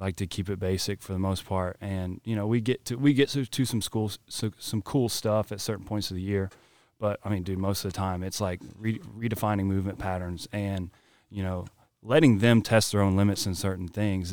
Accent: American